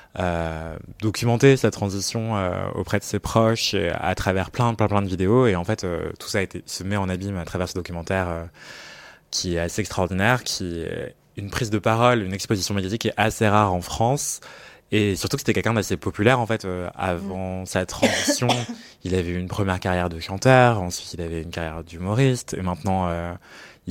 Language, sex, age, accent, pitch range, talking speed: French, male, 20-39, French, 90-110 Hz, 205 wpm